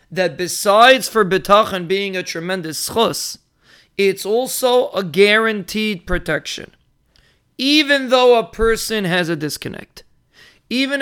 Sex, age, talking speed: male, 40-59, 115 wpm